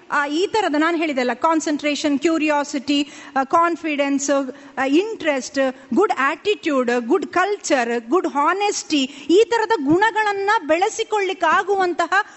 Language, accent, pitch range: Kannada, native, 280-380 Hz